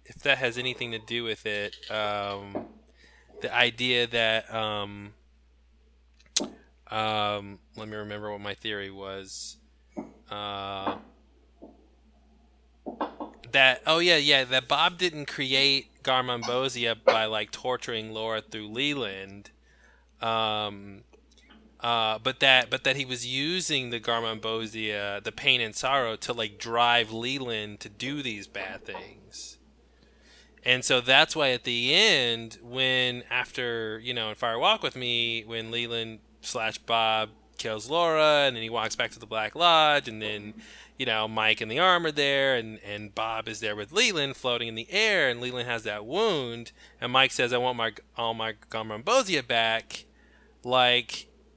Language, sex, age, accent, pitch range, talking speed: English, male, 20-39, American, 110-130 Hz, 150 wpm